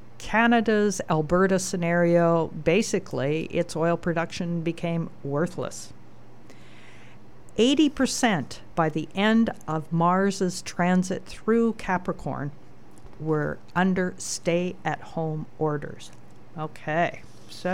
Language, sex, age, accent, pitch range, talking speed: English, female, 50-69, American, 155-195 Hz, 80 wpm